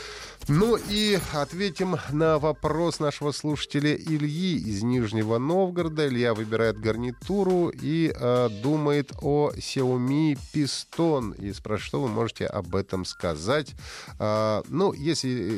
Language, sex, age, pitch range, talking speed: Russian, male, 30-49, 105-150 Hz, 115 wpm